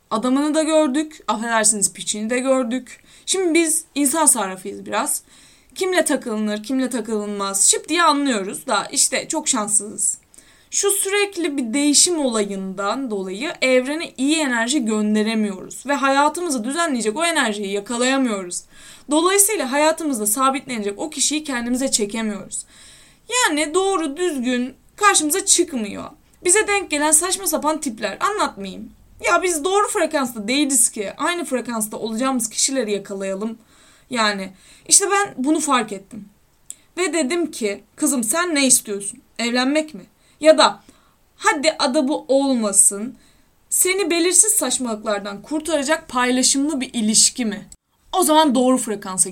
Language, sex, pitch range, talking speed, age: Turkish, female, 220-315 Hz, 125 wpm, 20-39